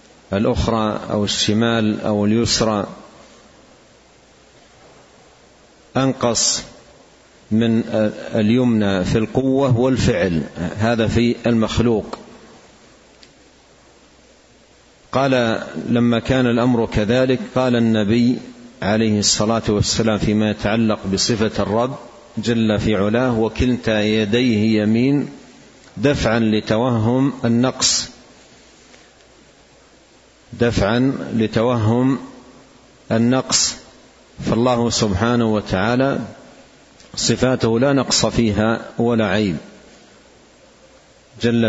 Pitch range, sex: 110-120 Hz, male